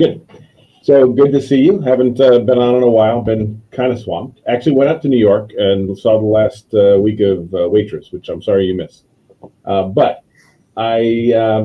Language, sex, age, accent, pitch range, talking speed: English, male, 40-59, American, 100-130 Hz, 210 wpm